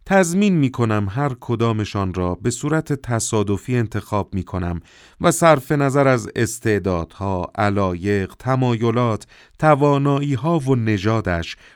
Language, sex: Persian, male